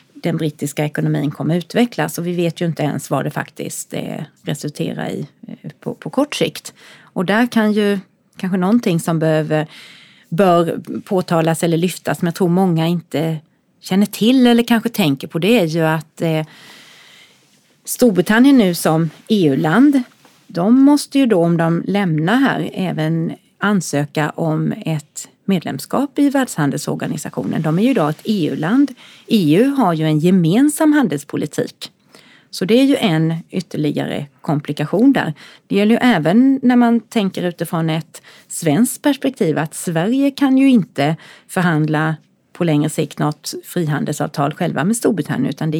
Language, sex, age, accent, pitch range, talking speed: Swedish, female, 30-49, native, 160-235 Hz, 145 wpm